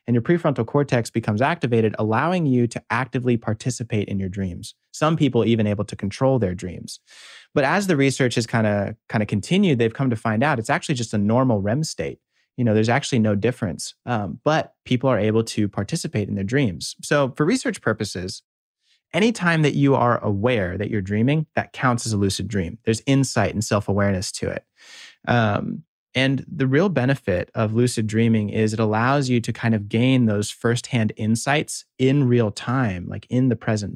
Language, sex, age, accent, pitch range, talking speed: English, male, 30-49, American, 105-135 Hz, 190 wpm